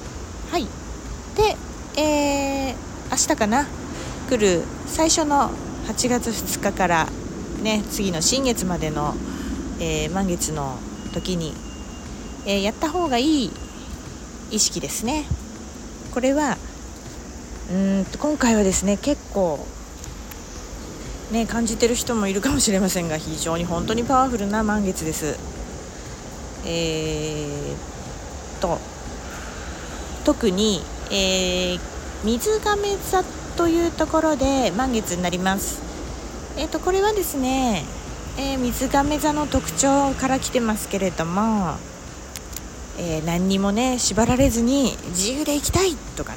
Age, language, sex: 40-59, Japanese, female